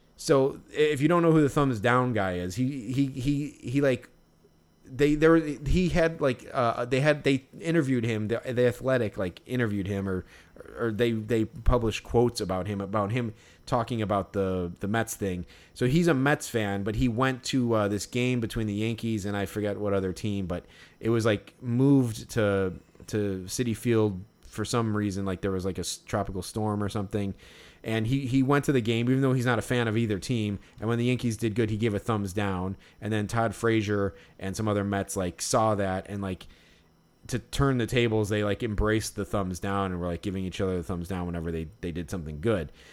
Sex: male